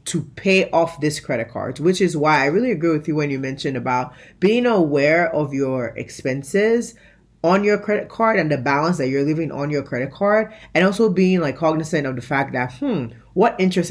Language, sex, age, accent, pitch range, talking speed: English, female, 20-39, American, 135-185 Hz, 210 wpm